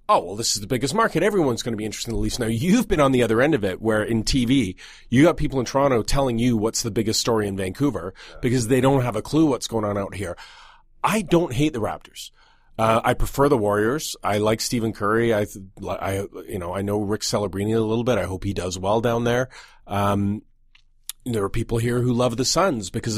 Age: 30-49